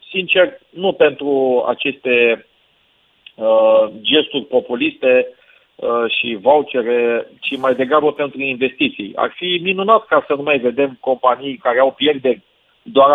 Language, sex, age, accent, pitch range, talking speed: Romanian, male, 40-59, native, 120-145 Hz, 120 wpm